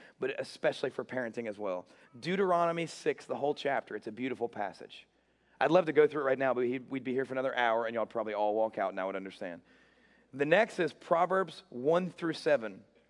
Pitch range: 125-160 Hz